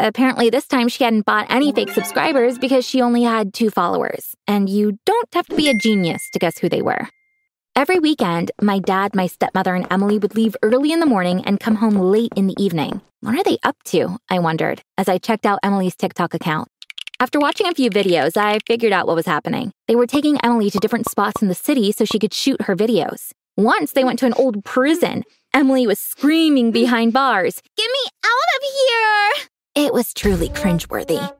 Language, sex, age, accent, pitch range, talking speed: English, female, 20-39, American, 195-260 Hz, 210 wpm